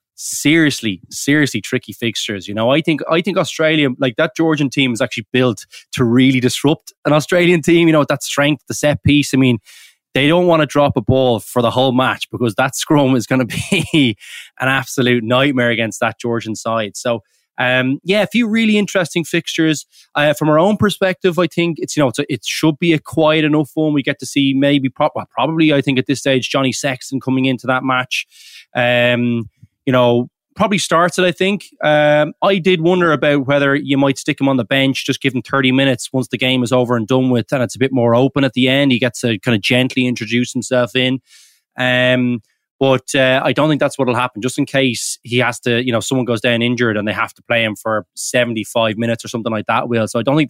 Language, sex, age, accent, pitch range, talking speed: English, male, 20-39, Irish, 120-150 Hz, 230 wpm